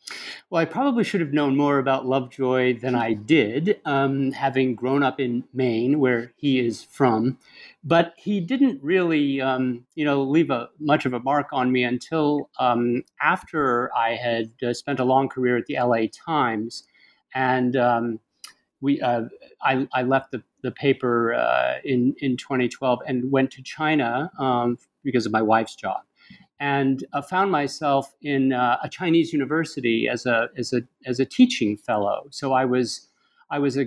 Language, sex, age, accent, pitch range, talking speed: English, male, 50-69, American, 120-145 Hz, 170 wpm